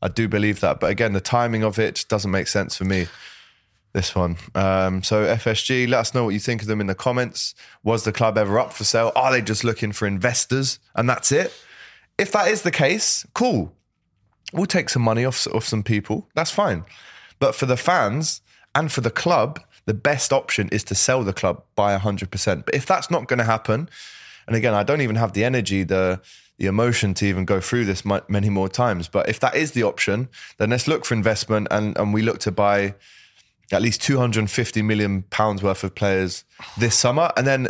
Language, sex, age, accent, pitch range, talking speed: English, male, 20-39, British, 100-125 Hz, 215 wpm